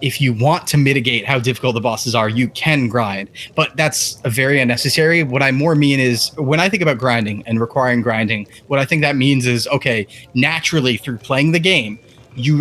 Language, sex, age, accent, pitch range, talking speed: English, male, 20-39, American, 120-150 Hz, 205 wpm